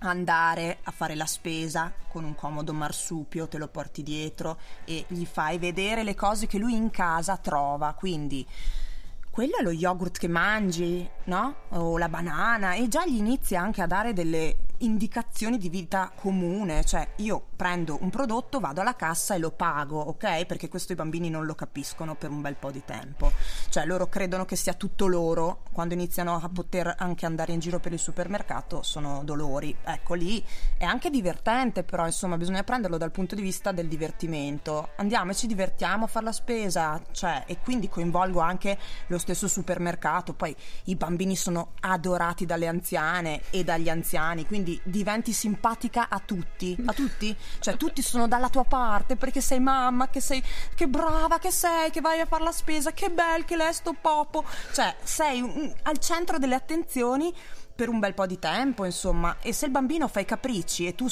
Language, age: Italian, 20-39